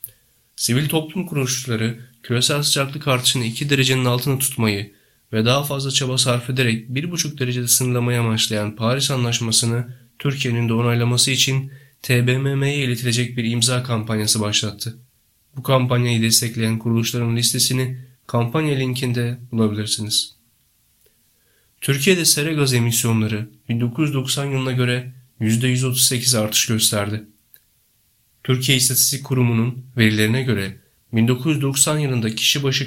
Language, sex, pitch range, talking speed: Turkish, male, 115-130 Hz, 110 wpm